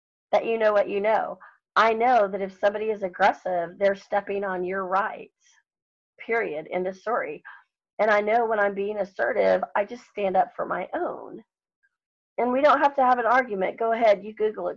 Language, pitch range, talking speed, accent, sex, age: English, 185-240 Hz, 200 wpm, American, female, 40-59